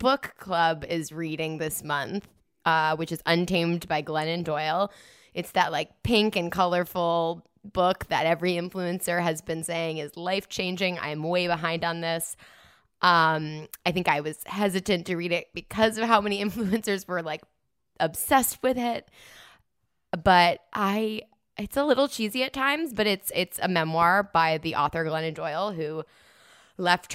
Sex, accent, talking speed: female, American, 160 wpm